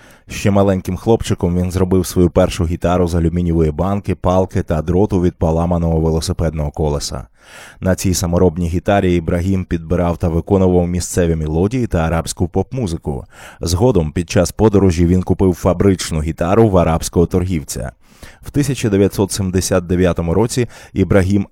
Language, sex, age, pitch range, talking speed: Ukrainian, male, 20-39, 85-100 Hz, 130 wpm